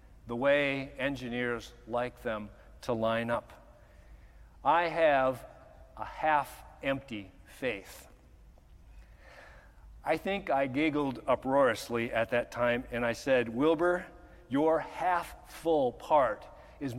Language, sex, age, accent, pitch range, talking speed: English, male, 50-69, American, 115-160 Hz, 100 wpm